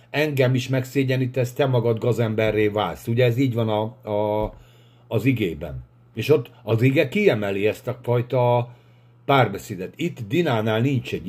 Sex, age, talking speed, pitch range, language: male, 50-69, 150 wpm, 110-130 Hz, Hungarian